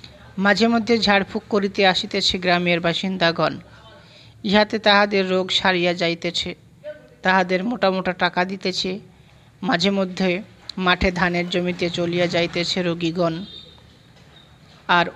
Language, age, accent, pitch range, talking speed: Bengali, 50-69, native, 170-195 Hz, 105 wpm